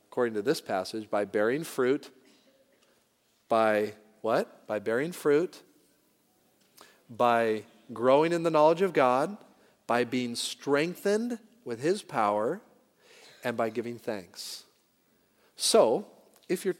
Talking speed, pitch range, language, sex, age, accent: 115 wpm, 125-165 Hz, English, male, 40-59, American